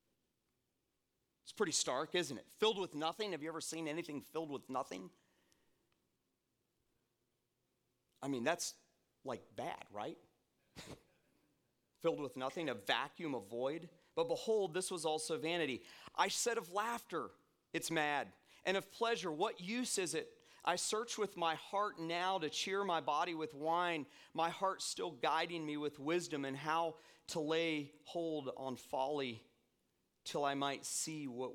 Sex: male